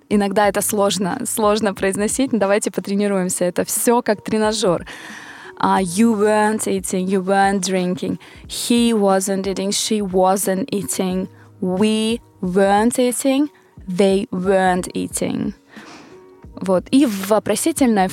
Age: 20-39